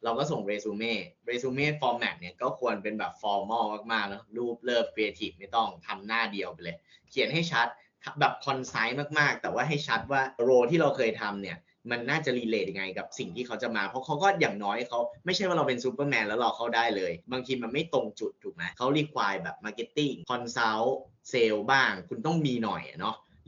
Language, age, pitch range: Thai, 20-39, 105-135 Hz